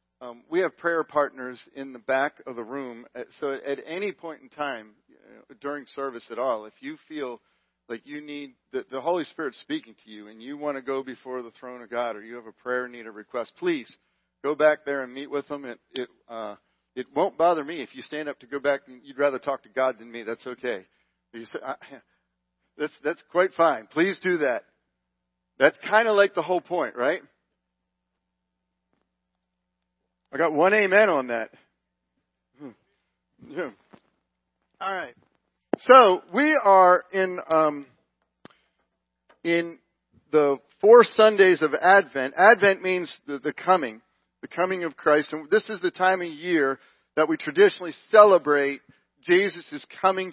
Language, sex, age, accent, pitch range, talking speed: English, male, 40-59, American, 120-175 Hz, 170 wpm